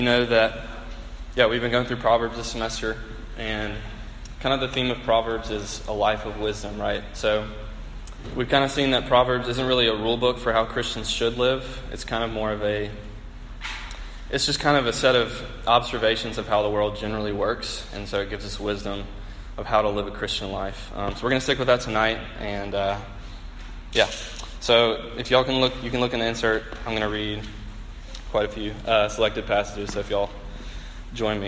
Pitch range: 100-120 Hz